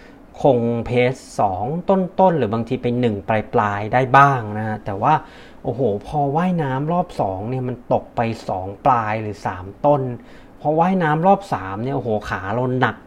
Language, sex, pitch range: Thai, male, 115-155 Hz